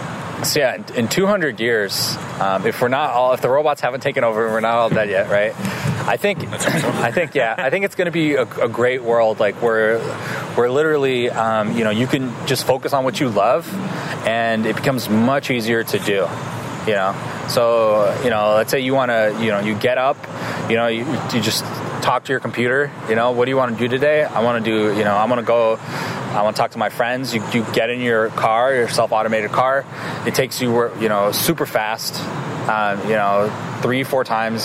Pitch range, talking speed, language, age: 110-130 Hz, 225 wpm, English, 20-39